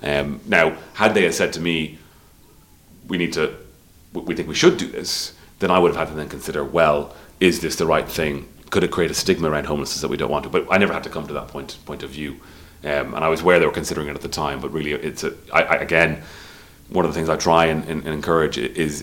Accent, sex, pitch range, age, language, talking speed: British, male, 75-80 Hz, 30-49, English, 270 wpm